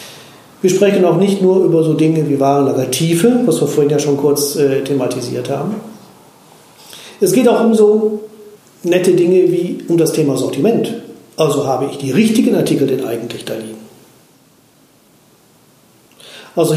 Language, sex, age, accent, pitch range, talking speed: German, male, 40-59, German, 135-170 Hz, 150 wpm